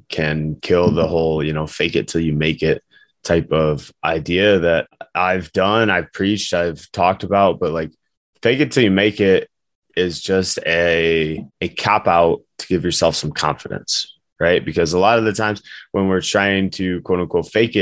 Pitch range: 80-95 Hz